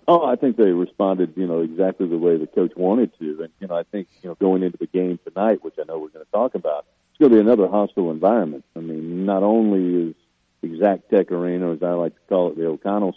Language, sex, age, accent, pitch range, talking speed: English, male, 50-69, American, 85-110 Hz, 265 wpm